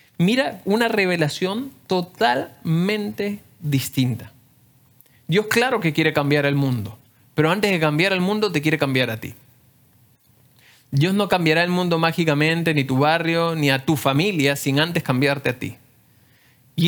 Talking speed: 150 wpm